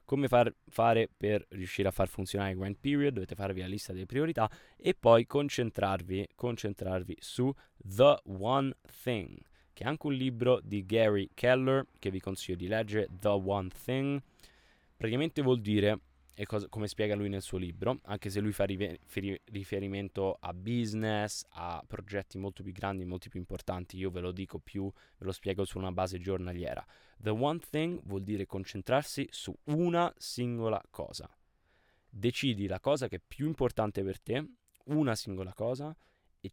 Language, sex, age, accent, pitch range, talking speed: Italian, male, 20-39, native, 95-120 Hz, 165 wpm